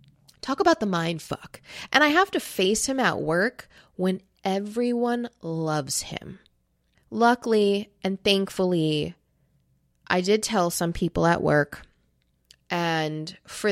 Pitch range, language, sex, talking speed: 160-205 Hz, English, female, 125 wpm